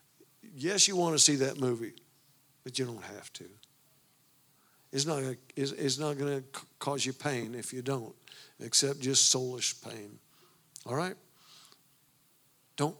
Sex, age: male, 60-79